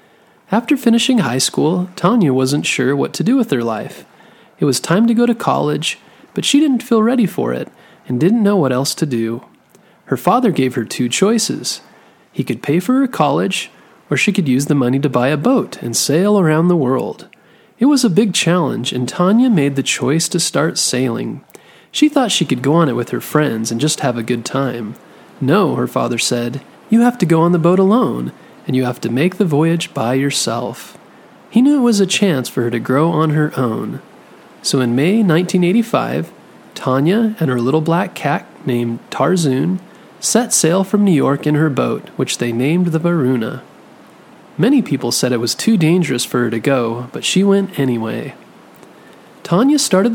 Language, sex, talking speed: English, male, 195 wpm